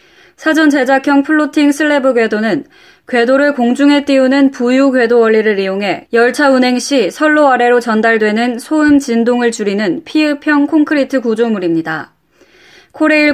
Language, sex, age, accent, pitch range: Korean, female, 20-39, native, 225-285 Hz